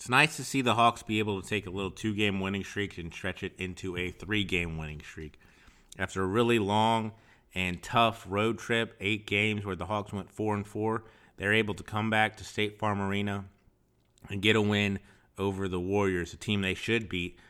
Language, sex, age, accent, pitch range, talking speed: English, male, 30-49, American, 95-105 Hz, 205 wpm